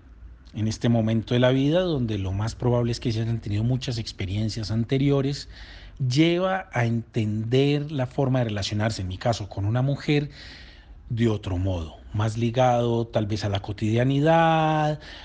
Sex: male